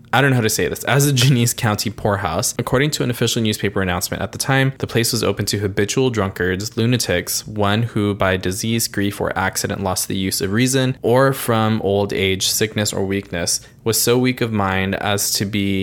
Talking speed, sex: 210 wpm, male